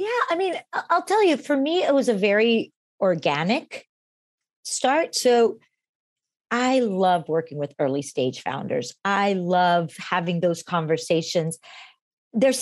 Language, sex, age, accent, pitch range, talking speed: English, female, 40-59, American, 180-245 Hz, 135 wpm